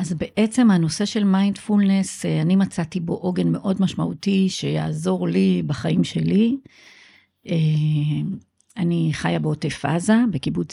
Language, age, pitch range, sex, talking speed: Hebrew, 50-69, 160-210 Hz, female, 110 wpm